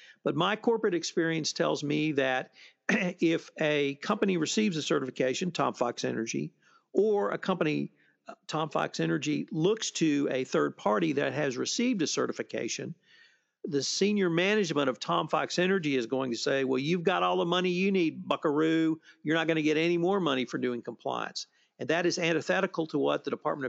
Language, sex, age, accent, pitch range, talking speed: English, male, 50-69, American, 140-180 Hz, 180 wpm